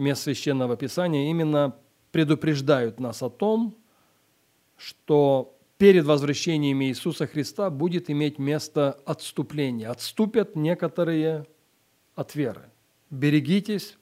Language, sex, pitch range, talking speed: English, male, 135-165 Hz, 95 wpm